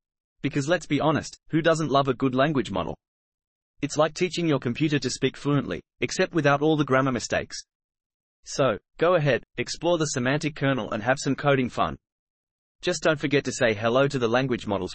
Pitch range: 120-150 Hz